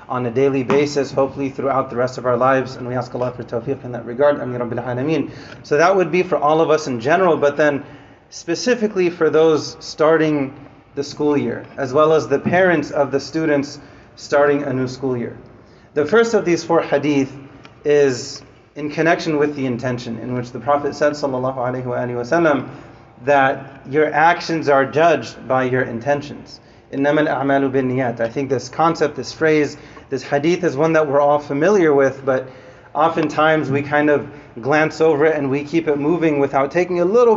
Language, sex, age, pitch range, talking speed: English, male, 30-49, 135-160 Hz, 185 wpm